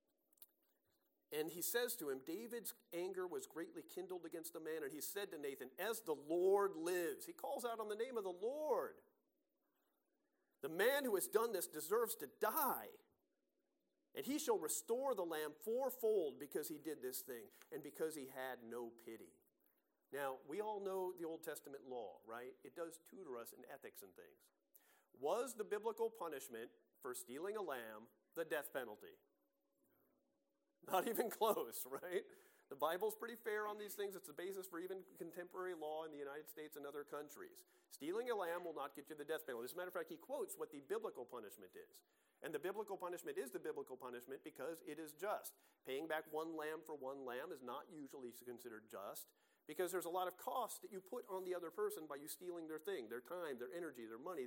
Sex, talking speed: male, 200 wpm